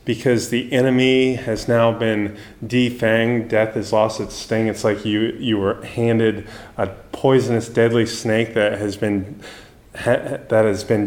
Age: 30-49